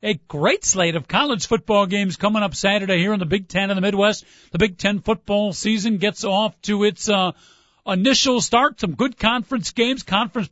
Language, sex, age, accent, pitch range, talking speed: English, male, 50-69, American, 180-225 Hz, 200 wpm